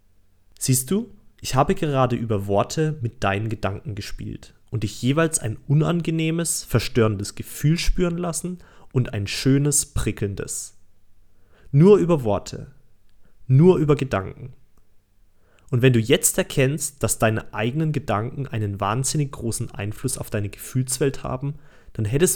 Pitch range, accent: 100-145 Hz, German